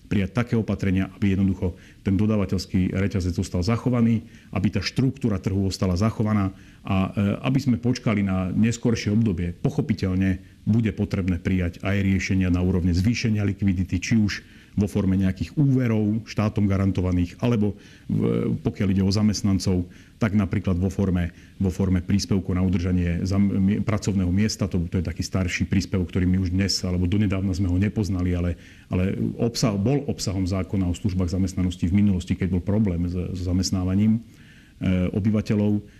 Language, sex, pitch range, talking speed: Slovak, male, 95-110 Hz, 145 wpm